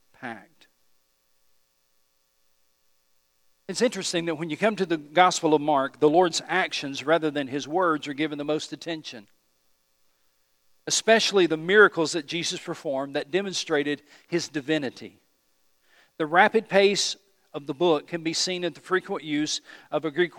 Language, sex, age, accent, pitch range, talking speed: English, male, 50-69, American, 135-185 Hz, 145 wpm